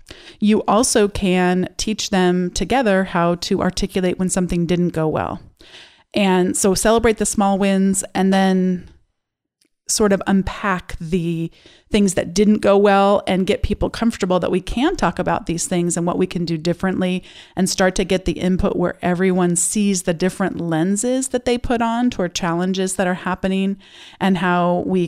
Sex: female